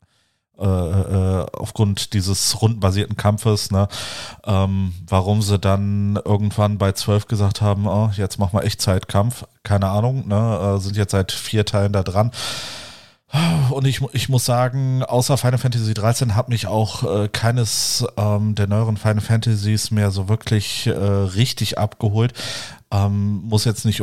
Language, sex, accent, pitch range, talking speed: German, male, German, 100-120 Hz, 150 wpm